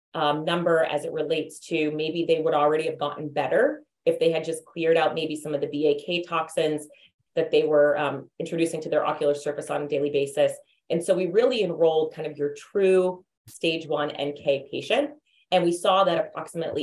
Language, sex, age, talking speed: English, female, 30-49, 200 wpm